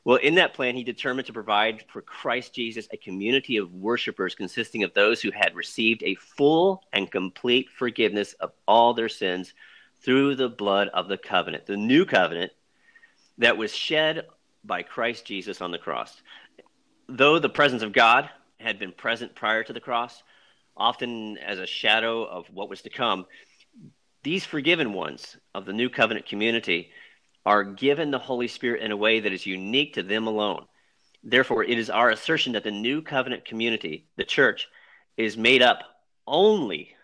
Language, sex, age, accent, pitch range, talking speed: English, male, 40-59, American, 105-125 Hz, 175 wpm